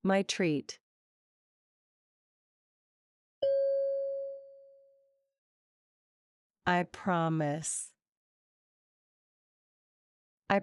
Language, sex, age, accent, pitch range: English, female, 40-59, American, 180-275 Hz